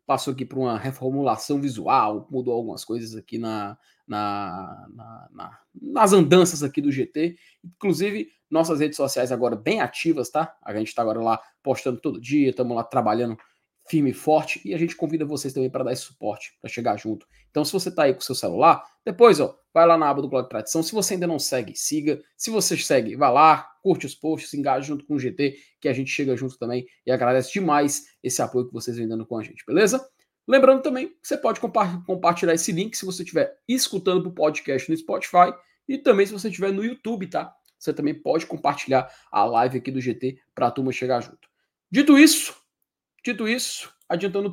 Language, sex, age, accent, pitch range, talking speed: Portuguese, male, 20-39, Brazilian, 125-185 Hz, 210 wpm